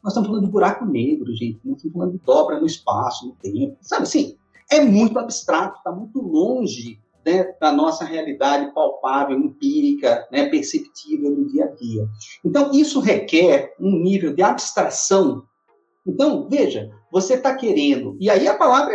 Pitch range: 175-285 Hz